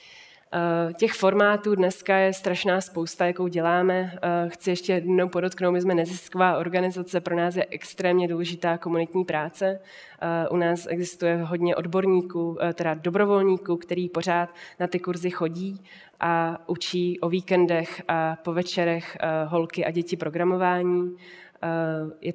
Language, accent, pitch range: Czech, native, 165-185 Hz